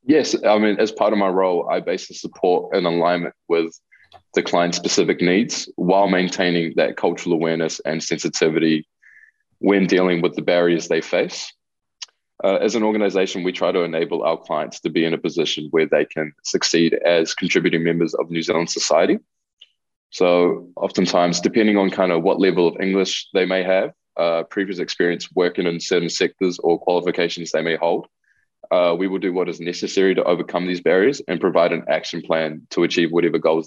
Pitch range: 85-95 Hz